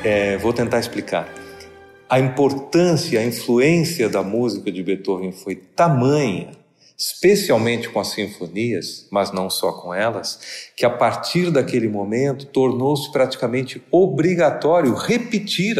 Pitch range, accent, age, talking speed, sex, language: 110-145 Hz, Brazilian, 40-59, 120 wpm, male, Portuguese